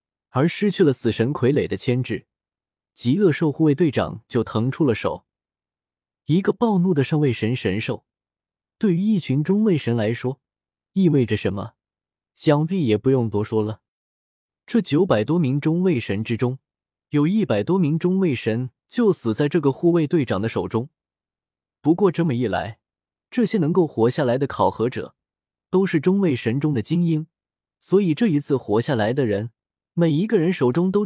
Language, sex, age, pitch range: Chinese, male, 20-39, 110-170 Hz